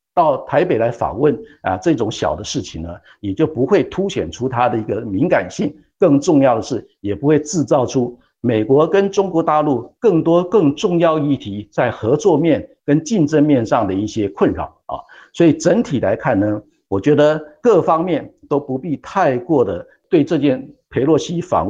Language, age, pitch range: Chinese, 50-69, 115-160 Hz